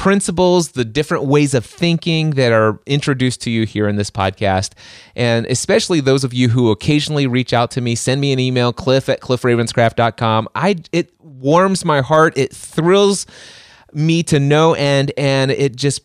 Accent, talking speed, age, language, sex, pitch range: American, 170 wpm, 30-49, English, male, 115-160 Hz